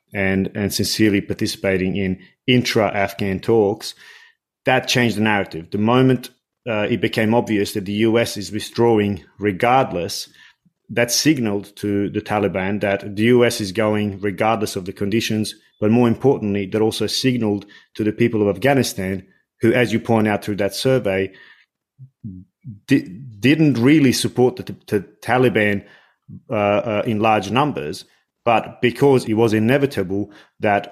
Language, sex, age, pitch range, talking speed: English, male, 30-49, 100-115 Hz, 140 wpm